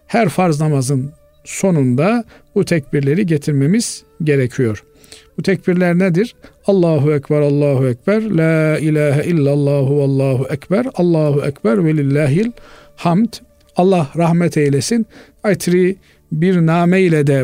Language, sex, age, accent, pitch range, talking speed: Turkish, male, 50-69, native, 140-190 Hz, 110 wpm